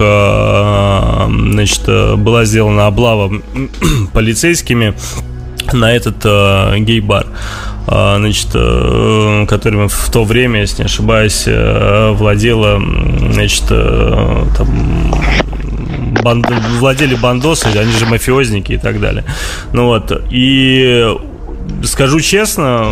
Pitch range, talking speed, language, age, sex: 105-120 Hz, 95 wpm, Russian, 20-39, male